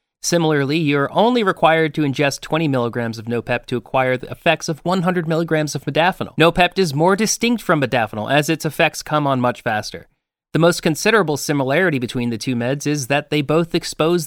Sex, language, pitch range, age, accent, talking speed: male, English, 125-160 Hz, 30-49, American, 190 wpm